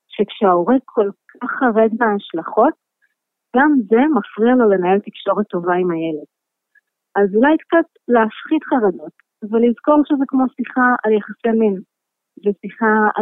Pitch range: 195-245 Hz